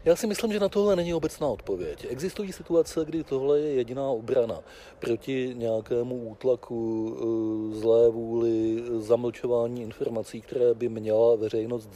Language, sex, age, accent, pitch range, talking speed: Czech, male, 40-59, native, 115-175 Hz, 135 wpm